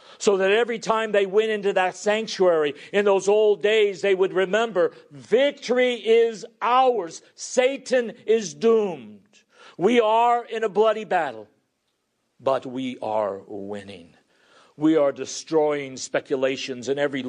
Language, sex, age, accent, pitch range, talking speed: English, male, 50-69, American, 135-210 Hz, 130 wpm